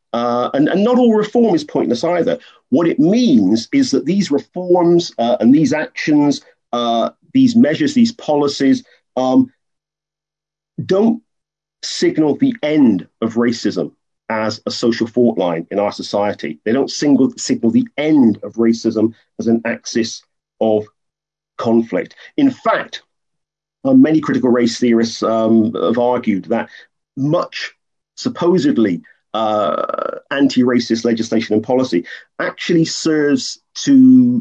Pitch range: 110-180 Hz